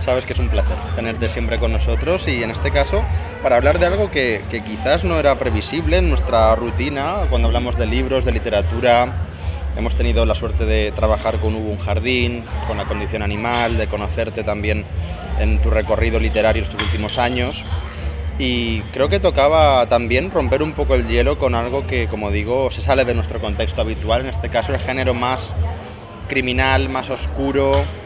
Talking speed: 185 wpm